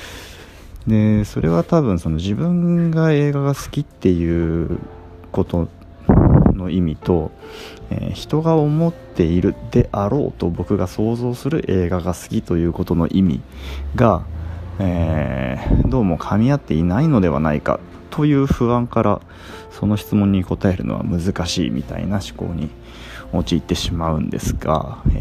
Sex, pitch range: male, 85-110 Hz